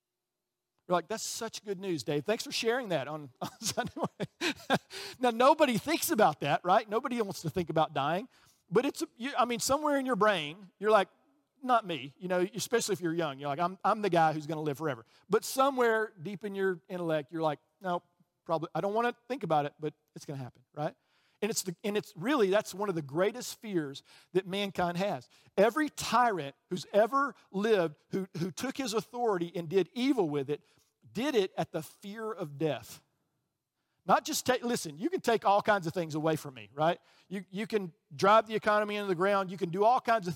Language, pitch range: English, 160-215 Hz